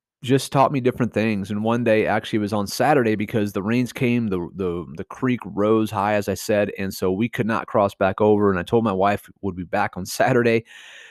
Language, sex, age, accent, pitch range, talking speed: English, male, 30-49, American, 100-130 Hz, 230 wpm